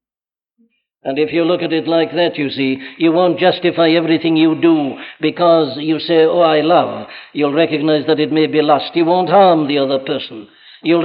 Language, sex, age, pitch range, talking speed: English, male, 60-79, 160-200 Hz, 195 wpm